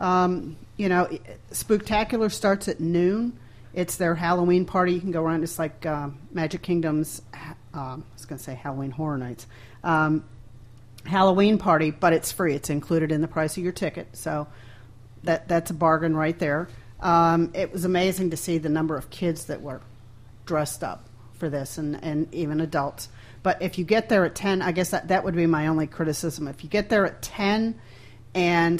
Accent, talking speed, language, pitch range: American, 195 wpm, English, 135-175 Hz